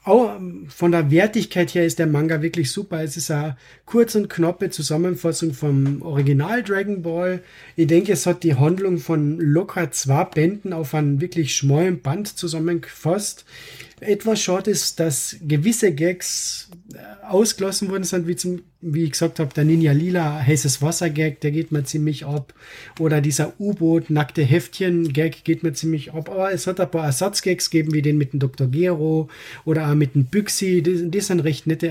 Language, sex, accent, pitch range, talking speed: German, male, German, 155-185 Hz, 180 wpm